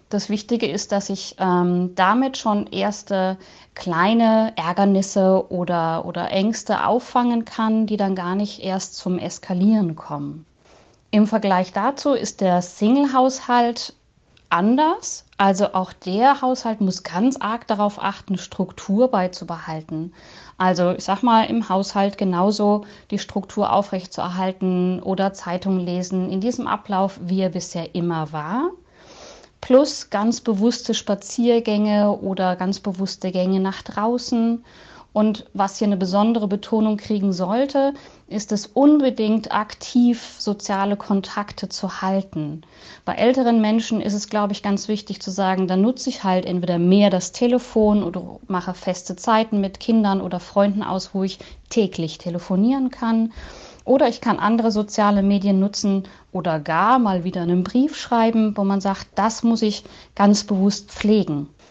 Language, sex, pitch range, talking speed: German, female, 185-225 Hz, 140 wpm